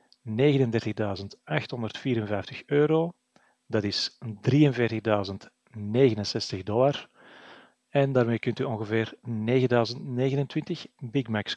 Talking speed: 75 wpm